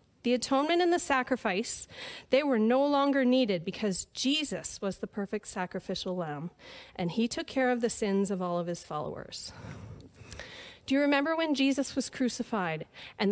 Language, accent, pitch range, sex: English, American, 195-270 Hz, female